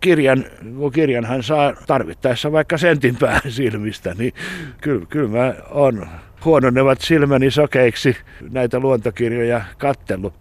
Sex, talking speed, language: male, 105 wpm, Finnish